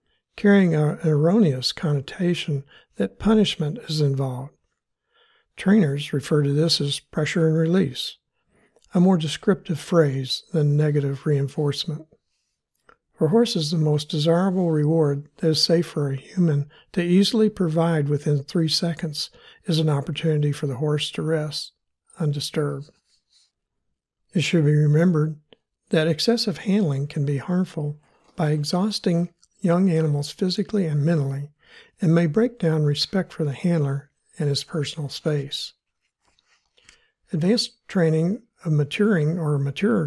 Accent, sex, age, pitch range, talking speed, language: American, male, 60-79, 150-180 Hz, 125 wpm, English